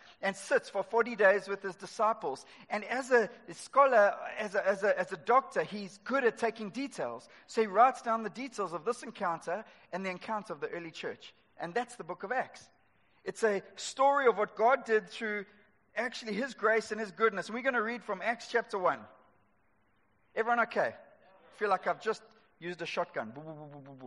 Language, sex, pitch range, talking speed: English, male, 185-235 Hz, 195 wpm